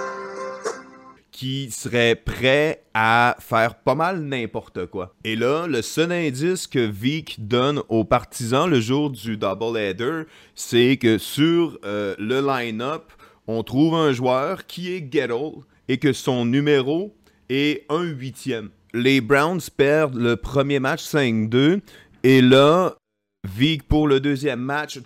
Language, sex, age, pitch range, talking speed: French, male, 30-49, 120-155 Hz, 140 wpm